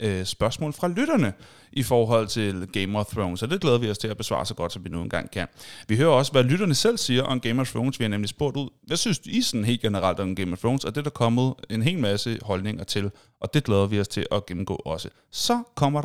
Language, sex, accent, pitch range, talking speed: Danish, male, native, 105-155 Hz, 265 wpm